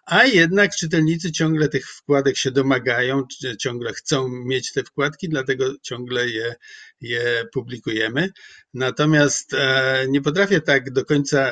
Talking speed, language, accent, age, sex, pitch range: 125 wpm, Polish, native, 50-69, male, 120-145 Hz